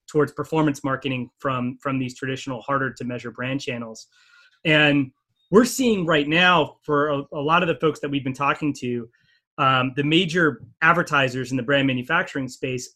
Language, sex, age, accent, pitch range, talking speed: English, male, 30-49, American, 135-165 Hz, 175 wpm